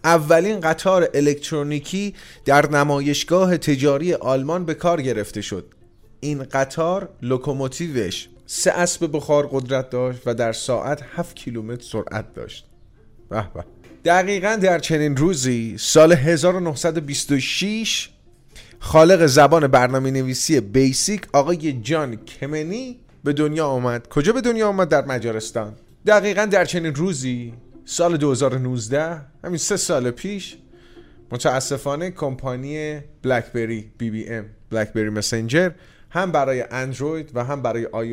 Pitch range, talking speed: 115-165 Hz, 115 wpm